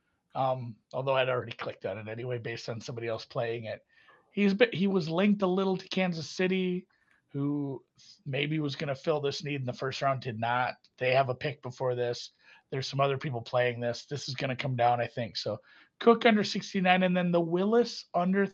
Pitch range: 125-175 Hz